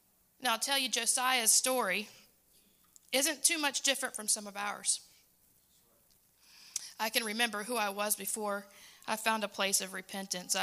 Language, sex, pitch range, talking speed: English, female, 200-245 Hz, 150 wpm